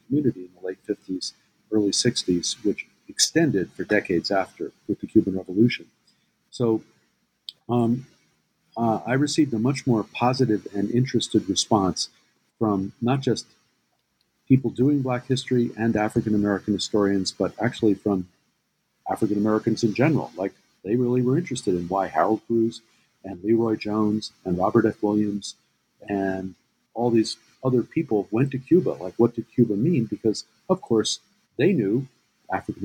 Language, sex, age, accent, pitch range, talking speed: English, male, 50-69, American, 100-120 Hz, 140 wpm